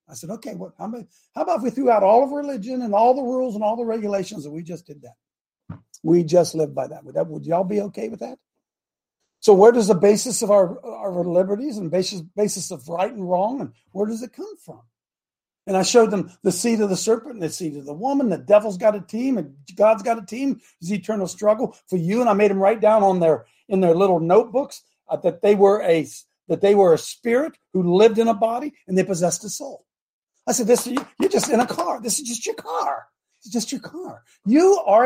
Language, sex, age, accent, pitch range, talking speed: English, male, 50-69, American, 185-250 Hz, 245 wpm